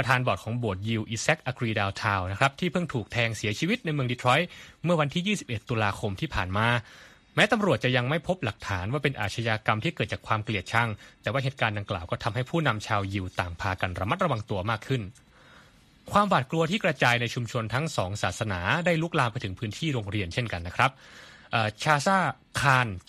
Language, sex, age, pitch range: Thai, male, 20-39, 105-145 Hz